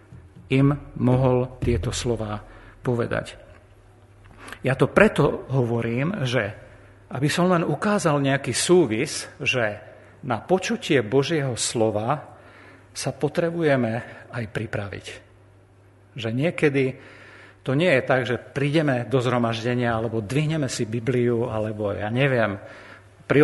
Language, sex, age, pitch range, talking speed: Slovak, male, 50-69, 105-135 Hz, 110 wpm